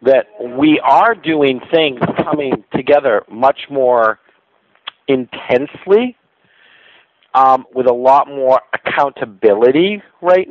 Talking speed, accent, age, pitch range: 95 wpm, American, 50-69, 110-155 Hz